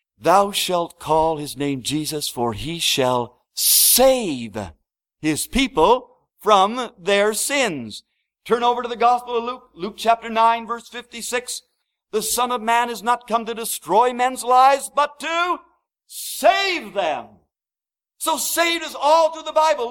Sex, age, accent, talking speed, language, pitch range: male, 50-69, American, 150 wpm, English, 225-285 Hz